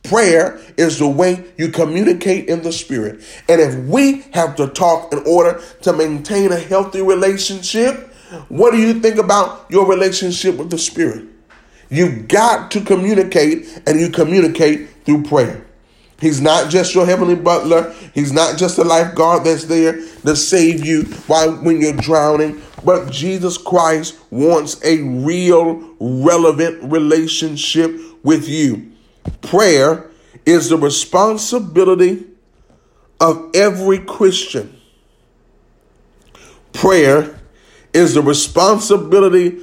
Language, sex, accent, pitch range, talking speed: English, male, American, 155-185 Hz, 125 wpm